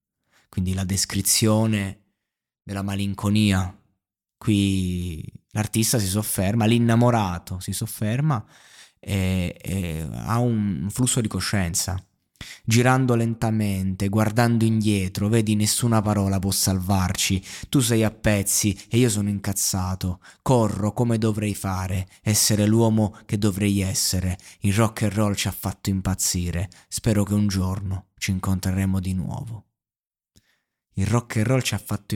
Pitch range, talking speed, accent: 95-115 Hz, 125 wpm, native